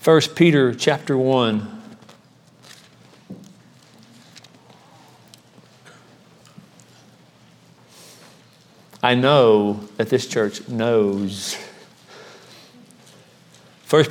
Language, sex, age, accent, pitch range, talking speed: English, male, 50-69, American, 115-145 Hz, 45 wpm